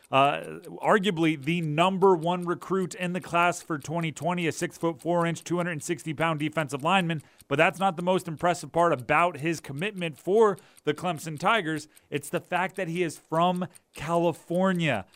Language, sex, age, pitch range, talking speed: English, male, 30-49, 145-175 Hz, 165 wpm